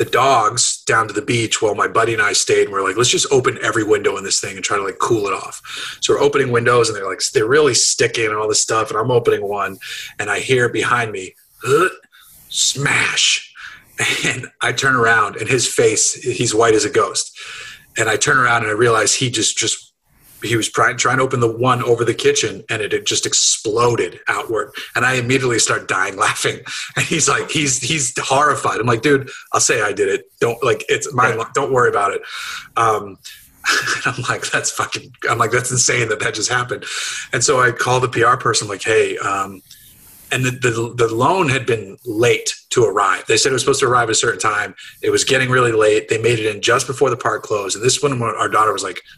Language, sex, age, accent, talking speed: English, male, 30-49, American, 225 wpm